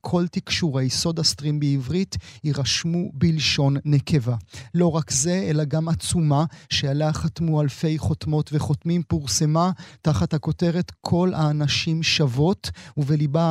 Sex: male